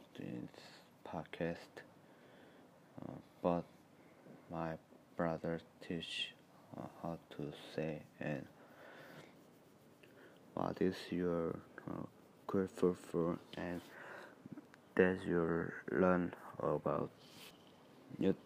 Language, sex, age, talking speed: English, male, 30-49, 80 wpm